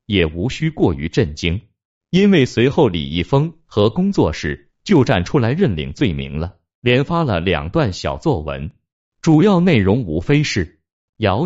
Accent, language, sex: native, Chinese, male